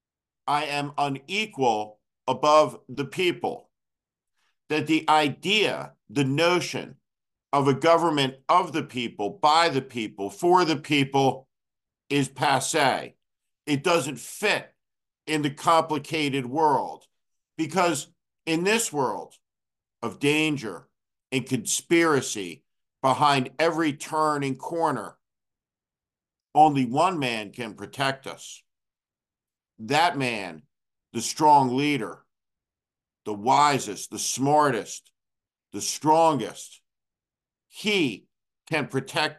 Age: 50-69